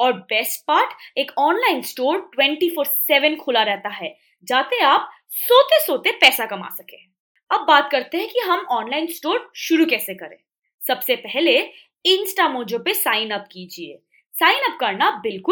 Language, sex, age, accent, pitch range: Hindi, female, 20-39, native, 240-380 Hz